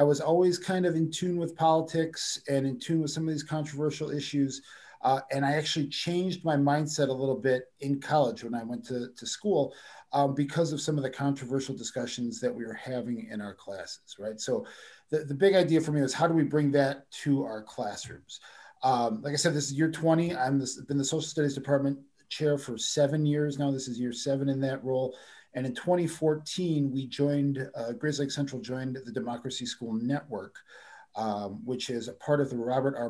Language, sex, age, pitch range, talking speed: English, male, 40-59, 120-150 Hz, 210 wpm